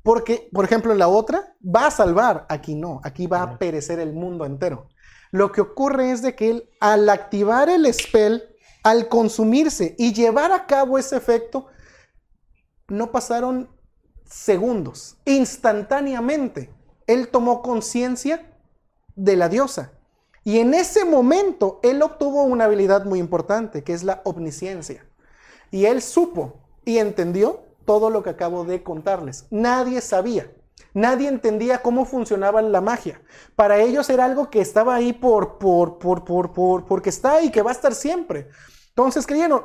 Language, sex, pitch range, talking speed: Spanish, male, 195-265 Hz, 155 wpm